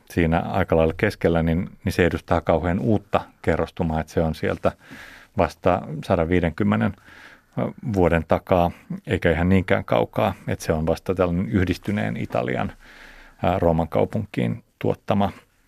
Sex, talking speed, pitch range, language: male, 125 wpm, 85-100 Hz, Finnish